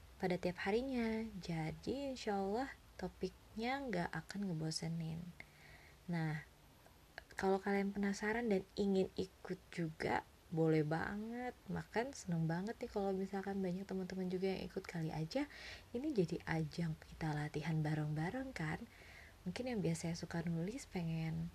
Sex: female